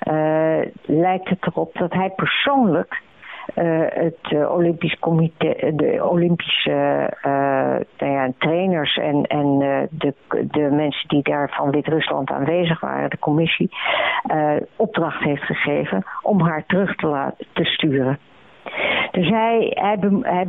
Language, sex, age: Dutch, female, 60-79